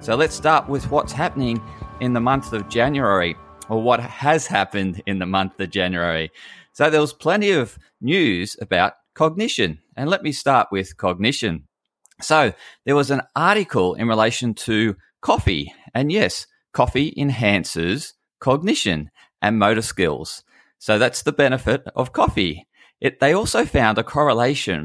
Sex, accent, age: male, Australian, 30-49